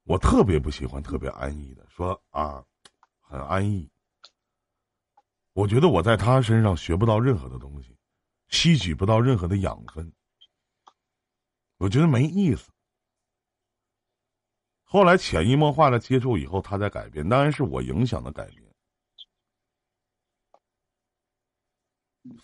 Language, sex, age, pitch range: Chinese, male, 50-69, 75-120 Hz